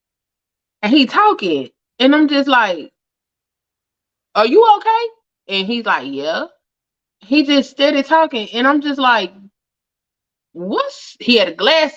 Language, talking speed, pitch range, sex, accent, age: English, 135 wpm, 195-295 Hz, female, American, 20-39